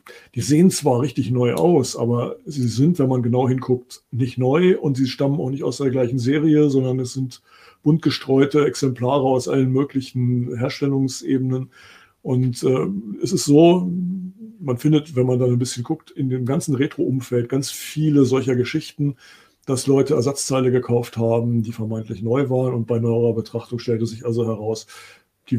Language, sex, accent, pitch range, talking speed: German, male, German, 120-140 Hz, 170 wpm